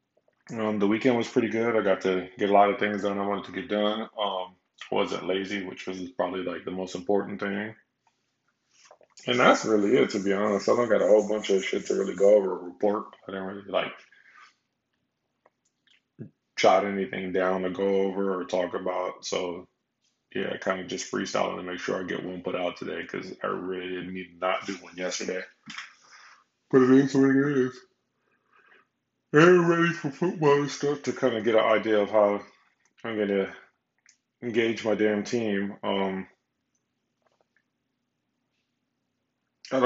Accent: American